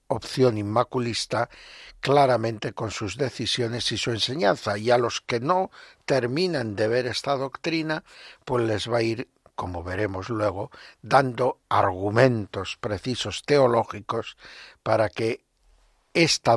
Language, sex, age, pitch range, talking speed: Spanish, male, 60-79, 110-135 Hz, 125 wpm